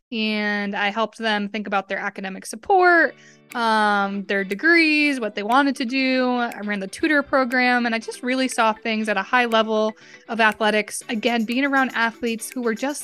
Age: 20-39